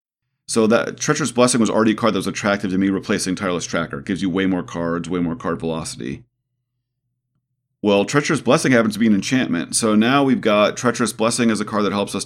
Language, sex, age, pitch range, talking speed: English, male, 40-59, 90-115 Hz, 225 wpm